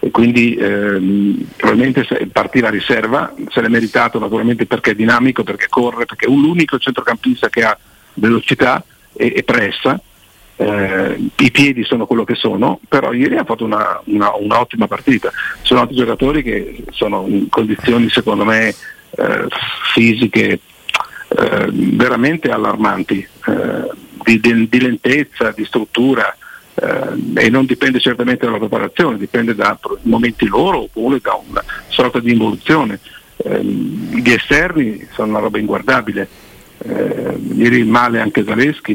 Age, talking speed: 50-69, 145 wpm